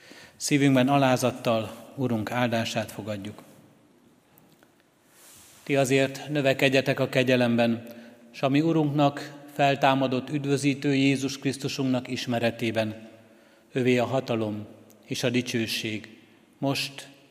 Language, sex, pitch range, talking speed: Hungarian, male, 115-135 Hz, 90 wpm